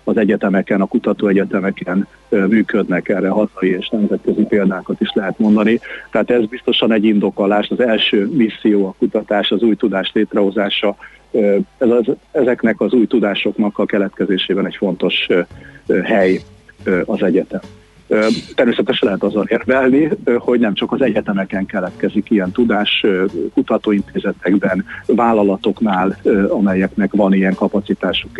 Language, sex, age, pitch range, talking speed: Hungarian, male, 50-69, 100-120 Hz, 125 wpm